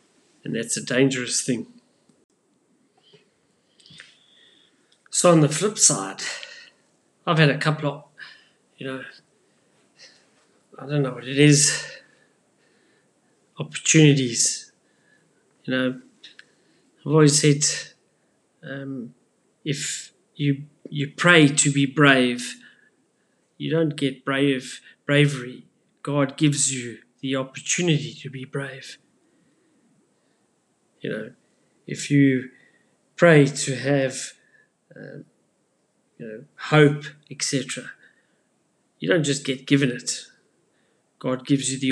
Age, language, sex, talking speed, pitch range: 30-49, English, male, 105 wpm, 130-150 Hz